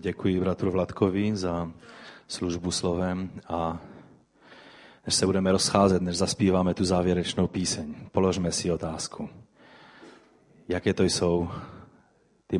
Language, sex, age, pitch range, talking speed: Czech, male, 30-49, 85-95 Hz, 110 wpm